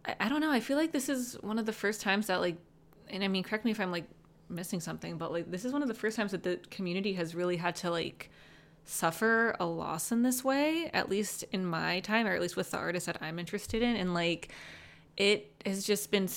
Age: 20-39